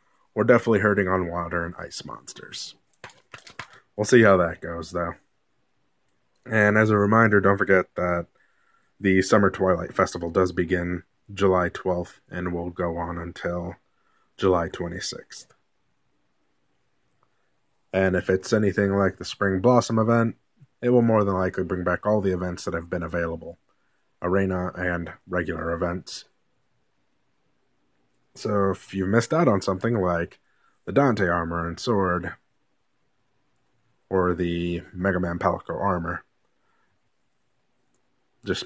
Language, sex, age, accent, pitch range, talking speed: English, male, 20-39, American, 85-100 Hz, 125 wpm